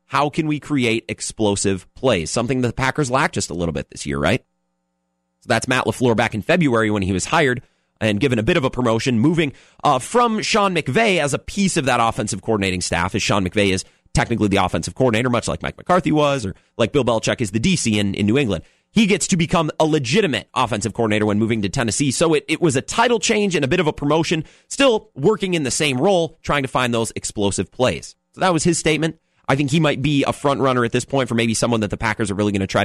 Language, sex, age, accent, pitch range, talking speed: English, male, 30-49, American, 105-160 Hz, 250 wpm